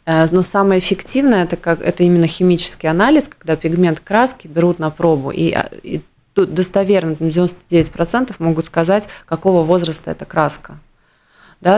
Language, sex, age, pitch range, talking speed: Russian, female, 20-39, 160-190 Hz, 140 wpm